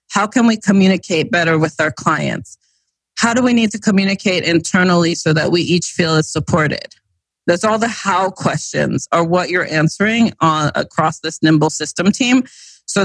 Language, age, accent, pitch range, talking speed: English, 30-49, American, 160-195 Hz, 175 wpm